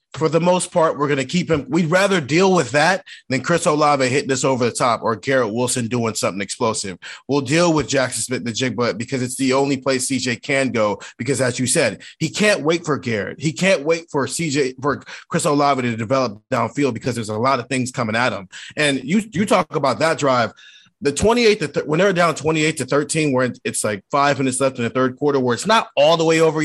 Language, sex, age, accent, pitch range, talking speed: English, male, 30-49, American, 125-160 Hz, 240 wpm